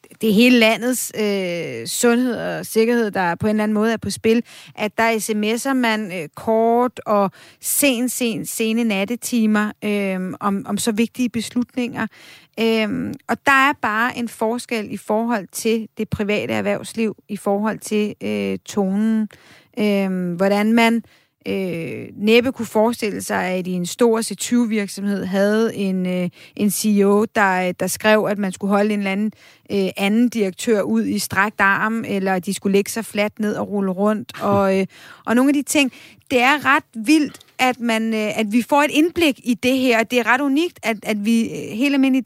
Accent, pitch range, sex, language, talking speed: native, 205-245 Hz, female, Danish, 180 wpm